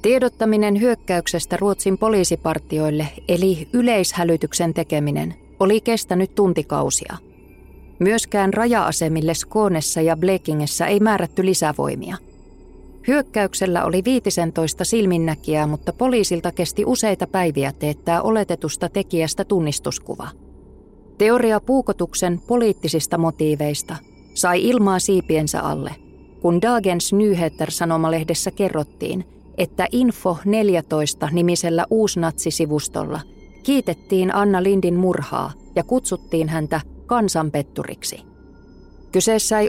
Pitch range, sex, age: 160-205 Hz, female, 30-49